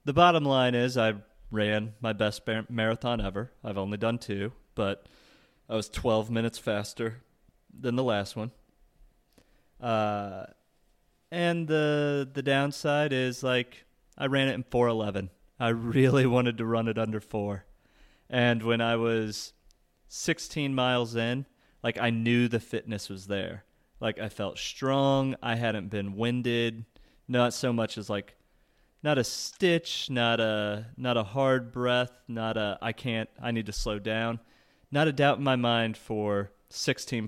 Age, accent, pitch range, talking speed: 30-49, American, 110-130 Hz, 155 wpm